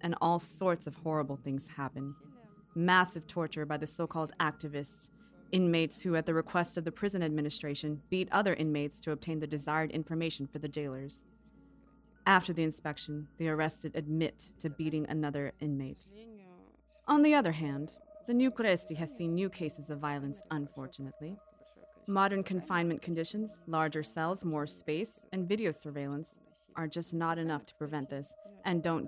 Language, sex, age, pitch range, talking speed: English, female, 30-49, 150-185 Hz, 155 wpm